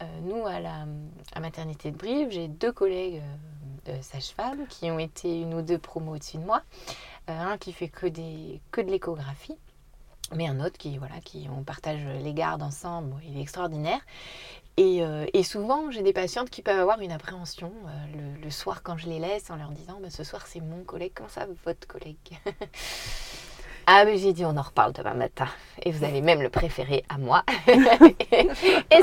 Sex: female